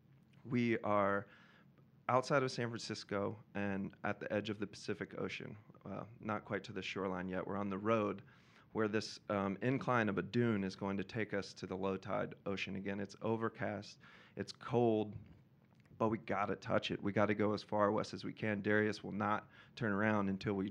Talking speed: 205 wpm